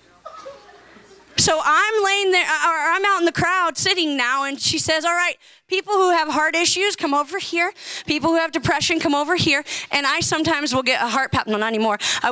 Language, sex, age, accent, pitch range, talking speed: English, female, 30-49, American, 280-370 Hz, 215 wpm